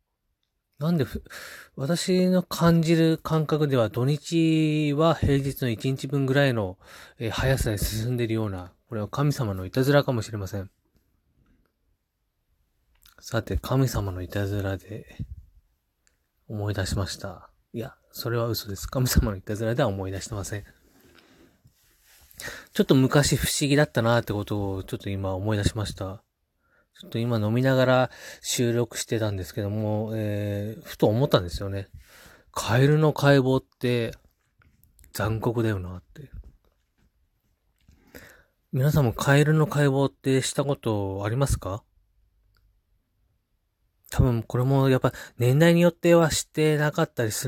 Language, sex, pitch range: Japanese, male, 100-140 Hz